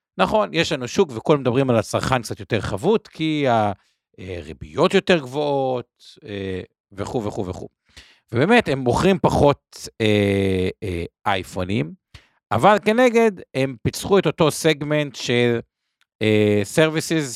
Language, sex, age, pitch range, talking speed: Hebrew, male, 50-69, 105-150 Hz, 110 wpm